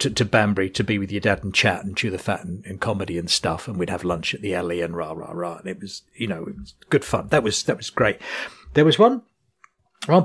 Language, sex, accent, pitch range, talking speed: English, male, British, 105-145 Hz, 280 wpm